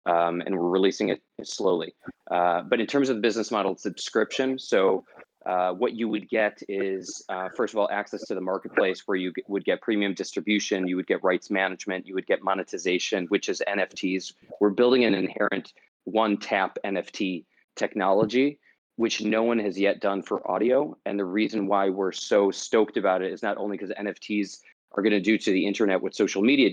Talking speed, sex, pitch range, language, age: 200 wpm, male, 95-110 Hz, English, 30-49